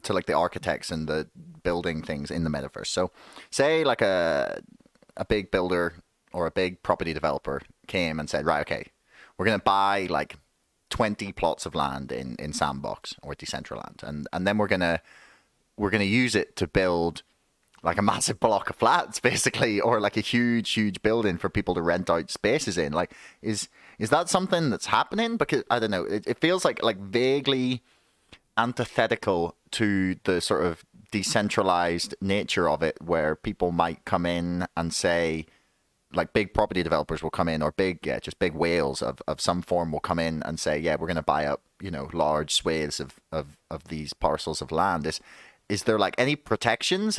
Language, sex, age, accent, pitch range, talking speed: English, male, 30-49, British, 80-110 Hz, 190 wpm